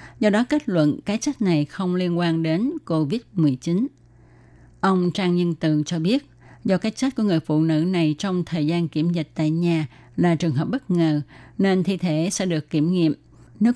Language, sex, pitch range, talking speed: Vietnamese, female, 155-200 Hz, 200 wpm